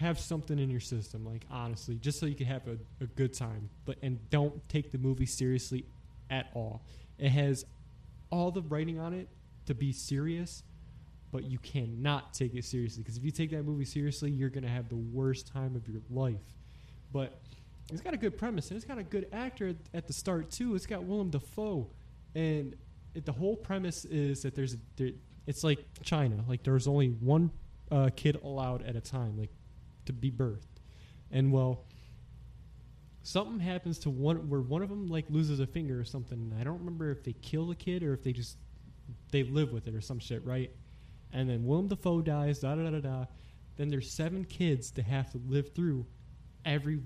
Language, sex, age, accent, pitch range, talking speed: English, male, 20-39, American, 125-155 Hz, 195 wpm